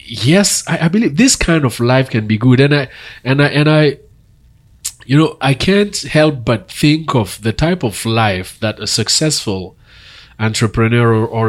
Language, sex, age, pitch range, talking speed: English, male, 30-49, 105-135 Hz, 180 wpm